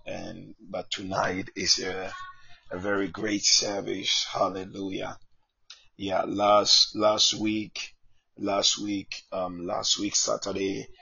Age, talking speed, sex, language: 30-49, 110 wpm, male, English